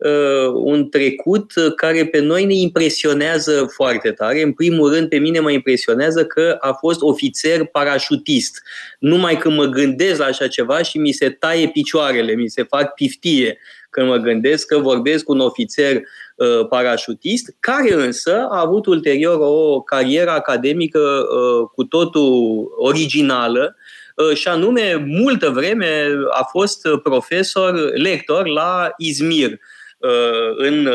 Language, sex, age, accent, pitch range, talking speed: Romanian, male, 20-39, native, 130-195 Hz, 130 wpm